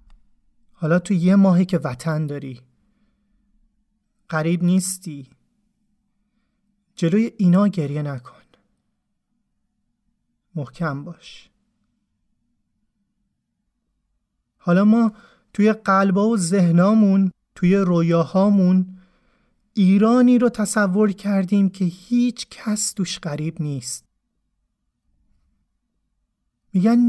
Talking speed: 75 wpm